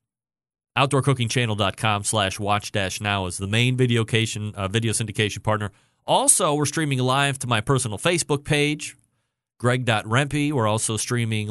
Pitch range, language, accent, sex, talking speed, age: 110-135 Hz, English, American, male, 135 wpm, 30-49